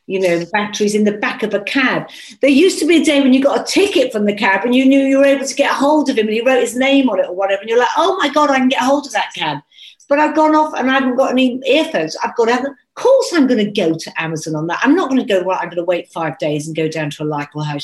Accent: British